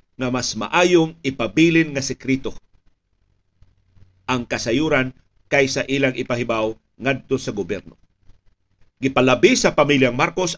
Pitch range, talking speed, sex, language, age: 100-150 Hz, 100 wpm, male, Filipino, 50-69